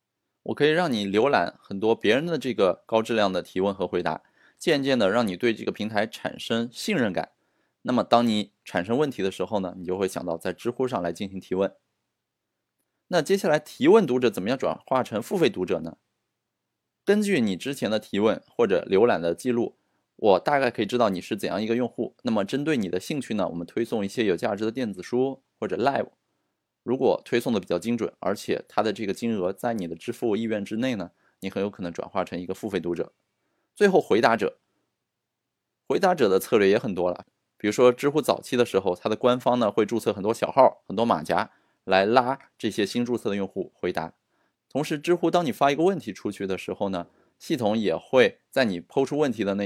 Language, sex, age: Chinese, male, 20-39